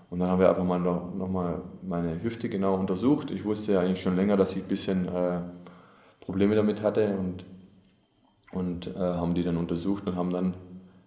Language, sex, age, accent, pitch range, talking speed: German, male, 20-39, German, 95-100 Hz, 190 wpm